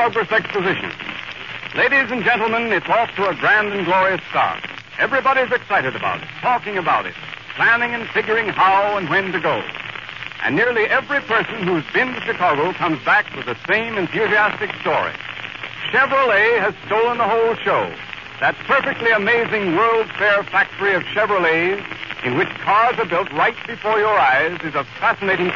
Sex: male